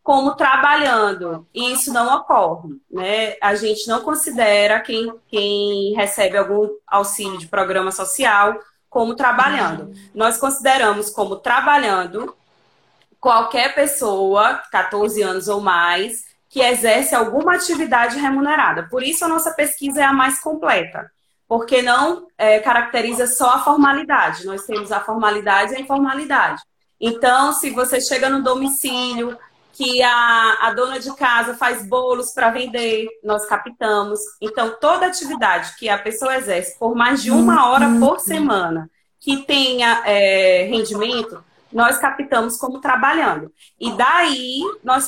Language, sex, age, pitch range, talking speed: Portuguese, female, 20-39, 205-265 Hz, 135 wpm